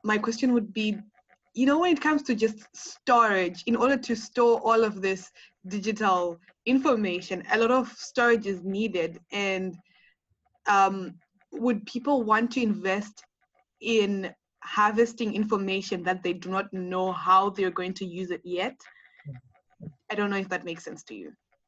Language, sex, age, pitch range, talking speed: English, female, 20-39, 185-240 Hz, 160 wpm